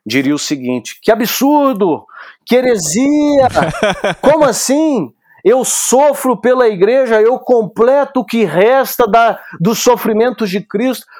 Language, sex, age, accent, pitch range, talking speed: Portuguese, male, 50-69, Brazilian, 170-230 Hz, 120 wpm